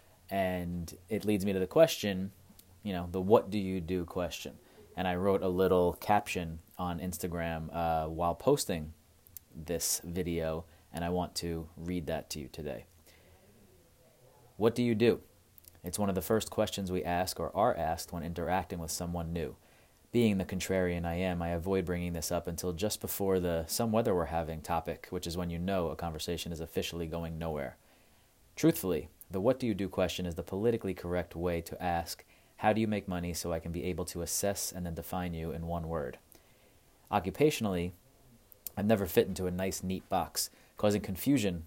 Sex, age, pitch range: male, 30-49, 85-95 Hz